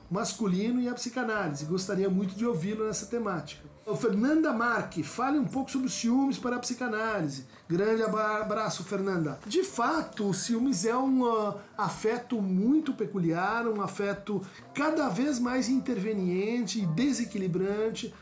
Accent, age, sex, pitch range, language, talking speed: Brazilian, 50-69, male, 195-255 Hz, Portuguese, 130 wpm